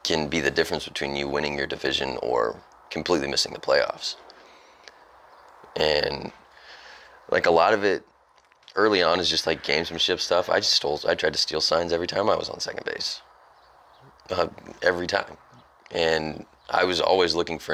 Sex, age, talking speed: male, 30-49, 175 wpm